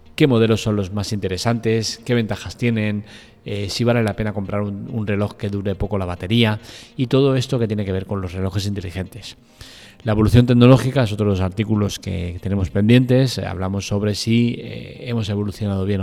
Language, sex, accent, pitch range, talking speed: Spanish, male, Spanish, 100-115 Hz, 195 wpm